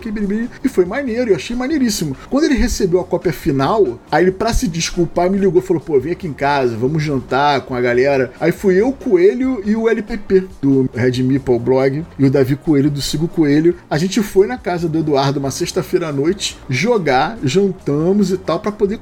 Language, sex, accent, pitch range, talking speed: Portuguese, male, Brazilian, 145-205 Hz, 205 wpm